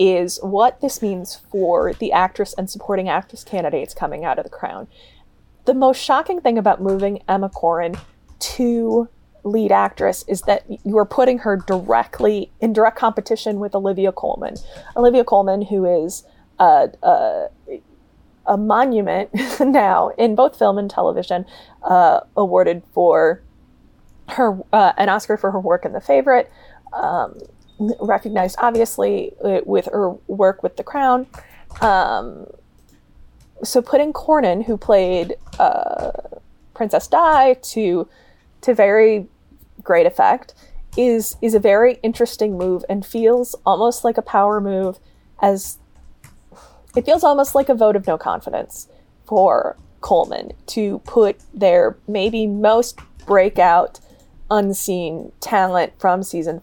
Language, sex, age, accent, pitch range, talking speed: English, female, 20-39, American, 195-245 Hz, 135 wpm